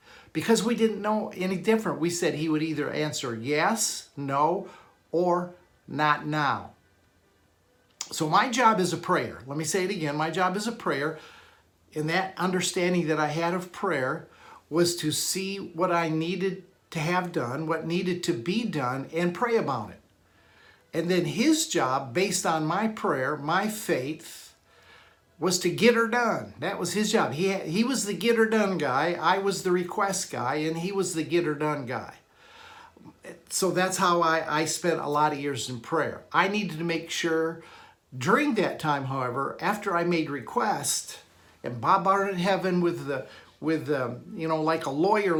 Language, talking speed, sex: English, 180 wpm, male